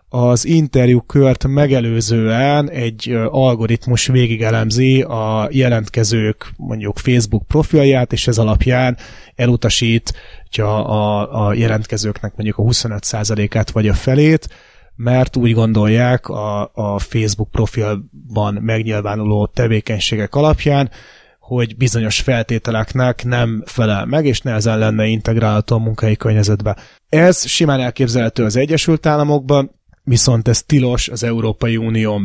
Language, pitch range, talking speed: Hungarian, 110-130 Hz, 110 wpm